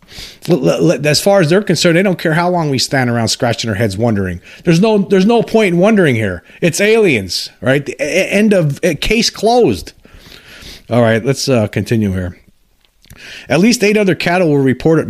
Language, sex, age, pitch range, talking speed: English, male, 40-59, 110-170 Hz, 185 wpm